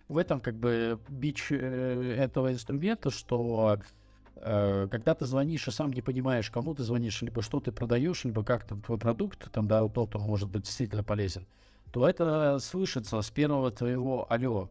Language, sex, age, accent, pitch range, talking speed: Russian, male, 50-69, native, 110-140 Hz, 175 wpm